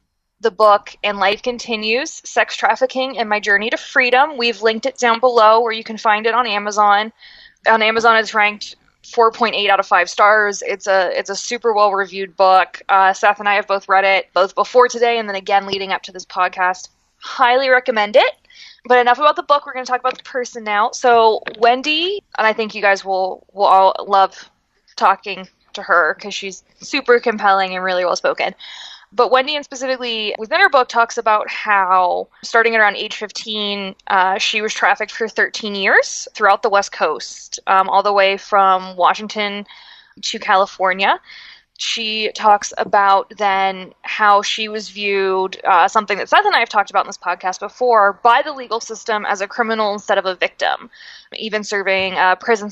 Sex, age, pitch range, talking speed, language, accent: female, 20-39, 195-230 Hz, 190 wpm, English, American